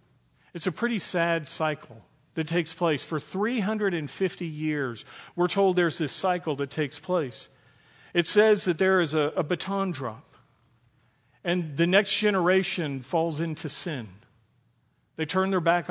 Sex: male